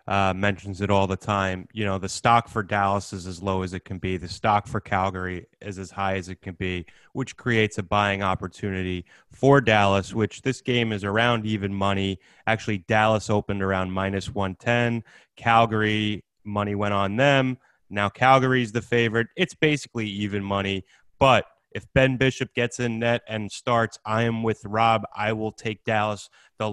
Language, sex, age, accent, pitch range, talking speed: English, male, 30-49, American, 100-115 Hz, 180 wpm